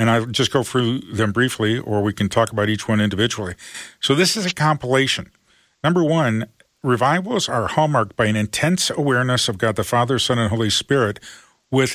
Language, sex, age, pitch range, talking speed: English, male, 40-59, 110-140 Hz, 190 wpm